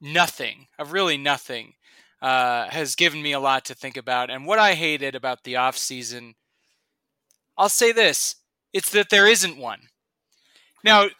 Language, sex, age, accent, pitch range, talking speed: English, male, 30-49, American, 165-235 Hz, 150 wpm